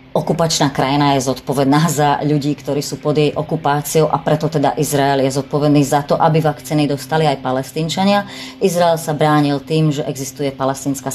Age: 30-49